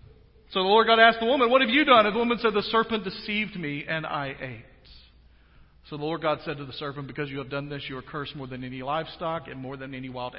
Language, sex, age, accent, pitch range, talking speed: English, male, 50-69, American, 130-165 Hz, 270 wpm